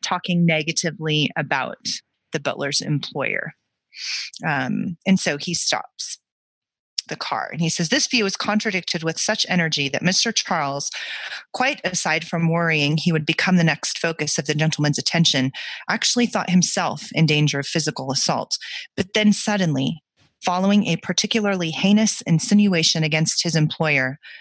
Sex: female